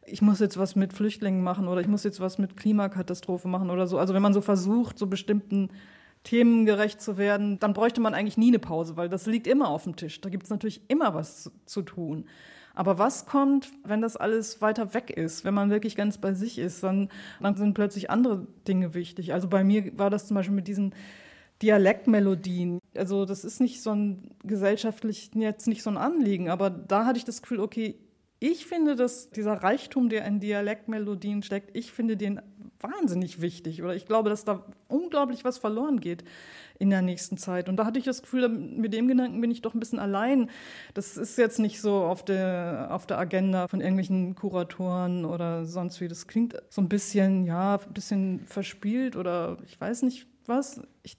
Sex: female